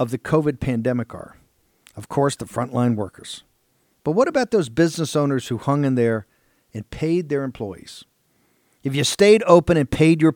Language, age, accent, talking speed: English, 50-69, American, 180 wpm